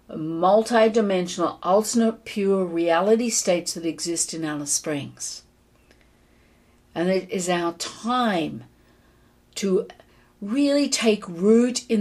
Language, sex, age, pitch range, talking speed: English, female, 50-69, 160-230 Hz, 100 wpm